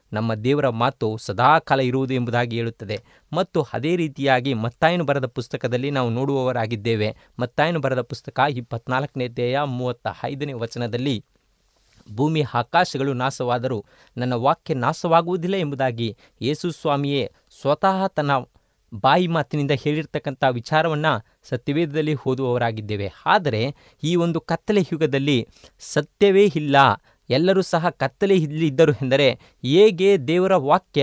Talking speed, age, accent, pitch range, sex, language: 105 wpm, 30-49, native, 125-160 Hz, male, Kannada